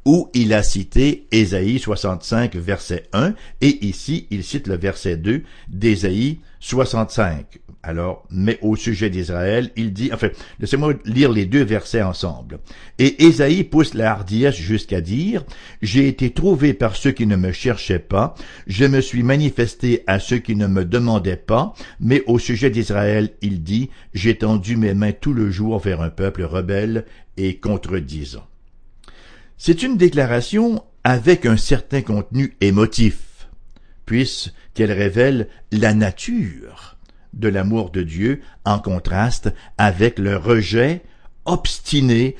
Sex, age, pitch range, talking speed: male, 60-79, 100-135 Hz, 140 wpm